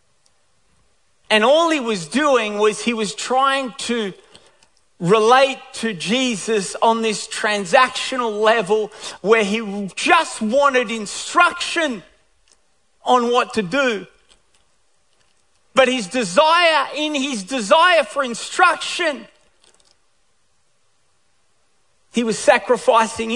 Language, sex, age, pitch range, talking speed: English, male, 40-59, 230-310 Hz, 95 wpm